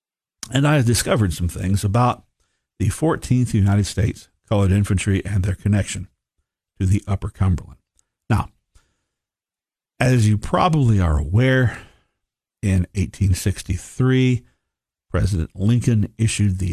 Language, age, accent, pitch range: English, 50-69, American, 90-110 Hz